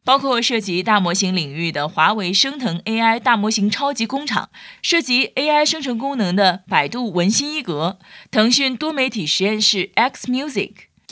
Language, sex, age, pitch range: Chinese, female, 20-39, 185-255 Hz